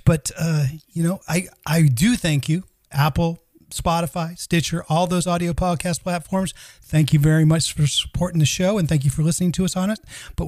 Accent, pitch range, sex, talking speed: American, 150-180 Hz, male, 200 wpm